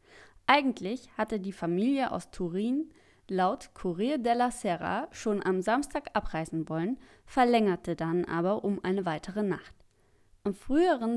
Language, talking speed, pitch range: German, 130 wpm, 175-235 Hz